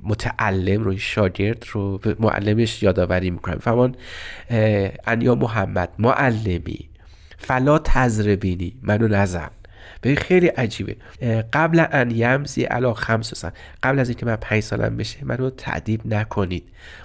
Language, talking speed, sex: Persian, 125 wpm, male